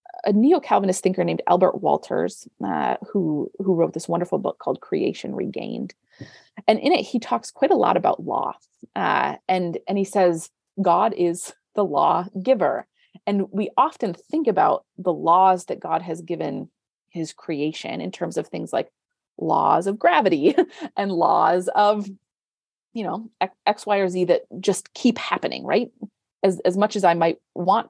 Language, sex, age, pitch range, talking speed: English, female, 30-49, 175-215 Hz, 170 wpm